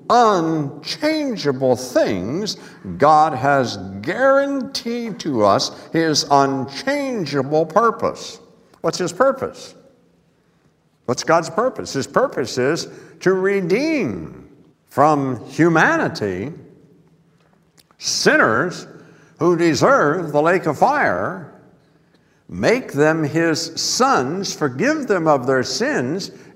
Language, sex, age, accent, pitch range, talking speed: English, male, 60-79, American, 130-185 Hz, 90 wpm